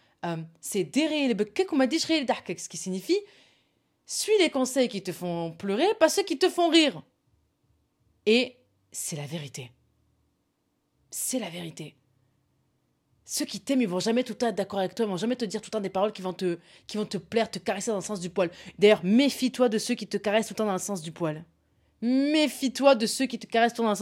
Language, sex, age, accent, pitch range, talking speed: French, female, 20-39, French, 190-250 Hz, 215 wpm